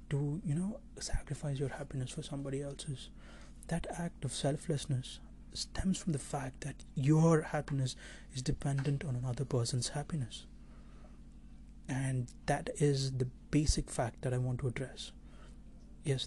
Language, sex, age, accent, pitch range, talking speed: English, male, 30-49, Indian, 130-155 Hz, 140 wpm